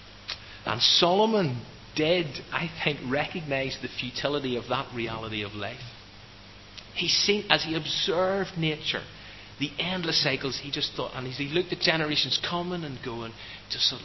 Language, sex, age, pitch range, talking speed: English, male, 30-49, 110-150 Hz, 155 wpm